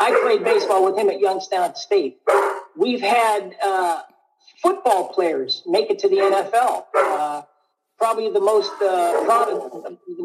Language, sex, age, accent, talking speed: English, male, 50-69, American, 140 wpm